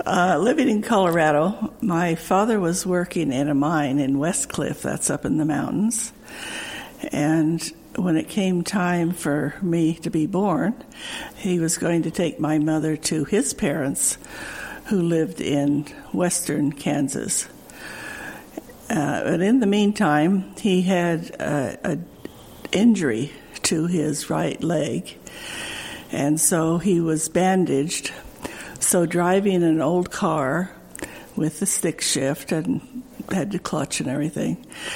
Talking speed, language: 130 wpm, English